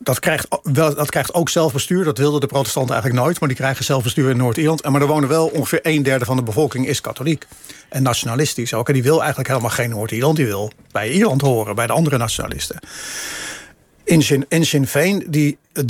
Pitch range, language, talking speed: 130-155 Hz, Dutch, 210 wpm